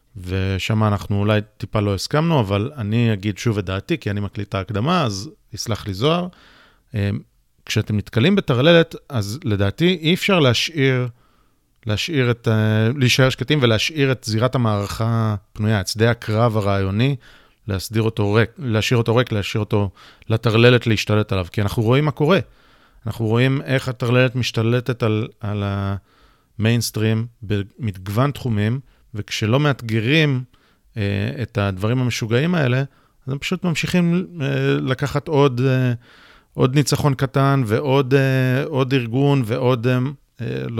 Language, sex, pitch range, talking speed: Hebrew, male, 105-130 Hz, 130 wpm